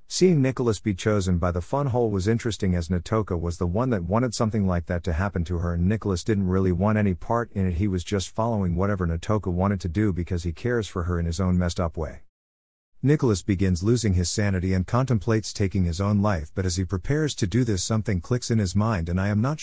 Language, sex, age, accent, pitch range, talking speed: English, male, 50-69, American, 90-110 Hz, 240 wpm